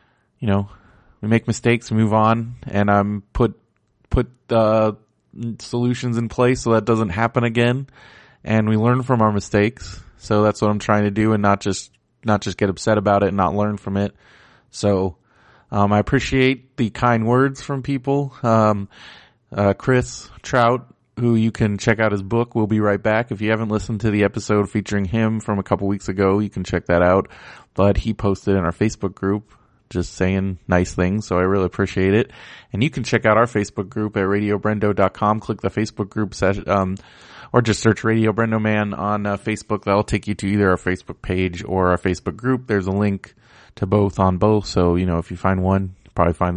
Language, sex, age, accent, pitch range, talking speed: English, male, 30-49, American, 100-115 Hz, 205 wpm